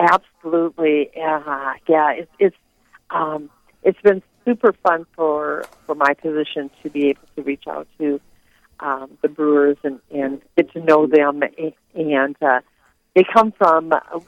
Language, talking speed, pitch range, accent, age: English, 150 wpm, 150-170 Hz, American, 40-59